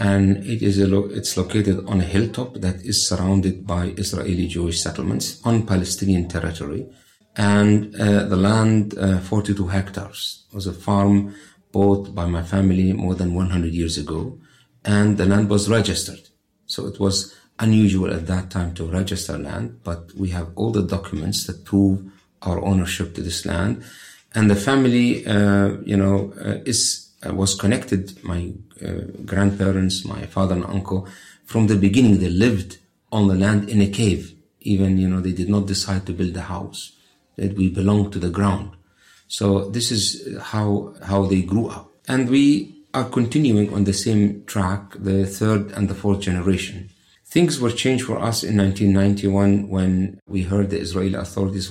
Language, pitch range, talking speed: English, 95-100 Hz, 170 wpm